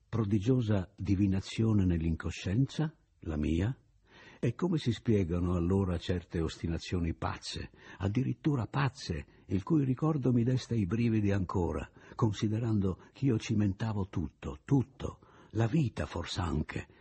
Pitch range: 90-125 Hz